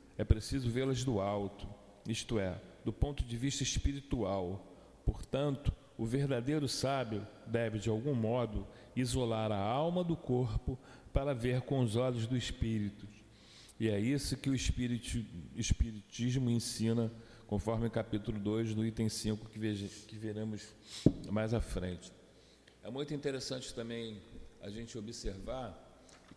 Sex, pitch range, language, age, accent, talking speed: male, 110-135 Hz, Portuguese, 40-59, Brazilian, 135 wpm